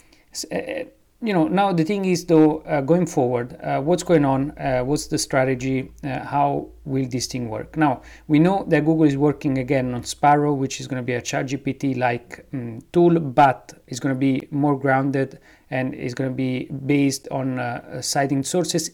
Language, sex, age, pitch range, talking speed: English, male, 30-49, 130-155 Hz, 195 wpm